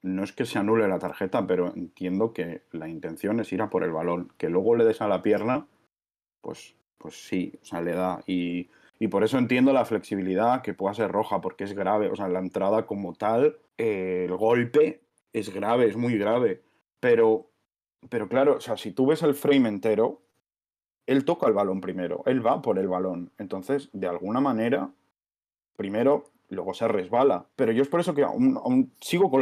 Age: 20-39